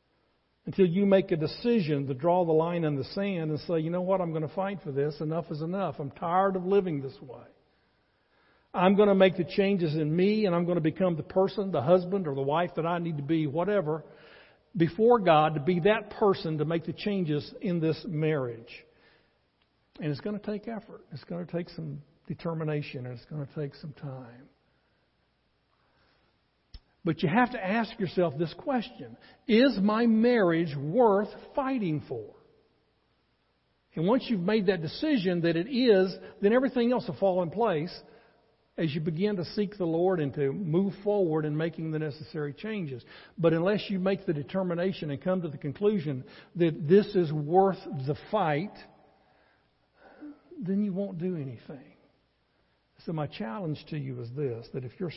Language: English